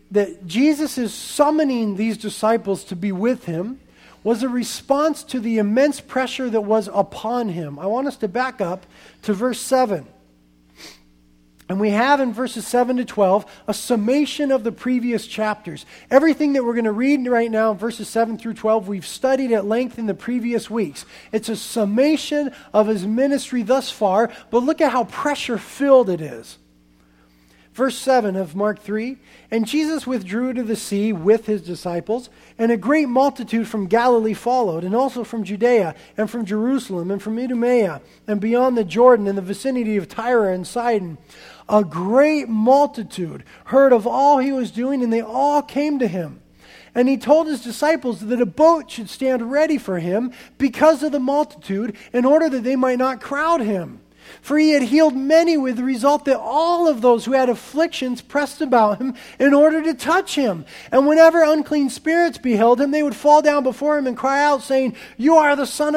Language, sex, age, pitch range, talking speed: English, male, 40-59, 215-275 Hz, 185 wpm